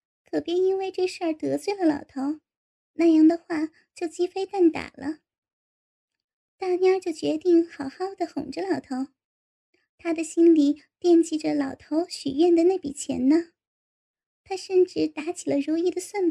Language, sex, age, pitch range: Chinese, male, 10-29, 305-360 Hz